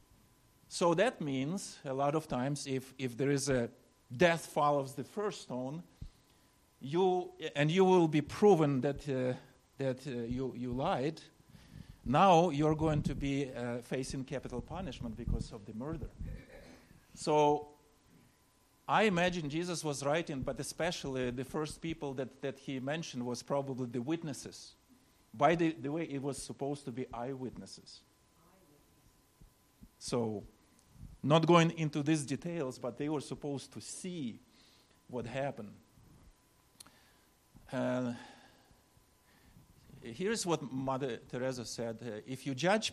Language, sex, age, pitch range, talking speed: English, male, 50-69, 130-155 Hz, 135 wpm